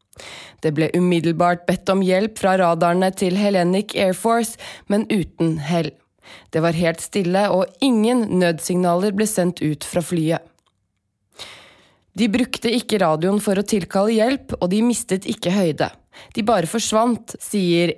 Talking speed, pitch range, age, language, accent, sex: 145 wpm, 175-210 Hz, 20-39, English, Swedish, female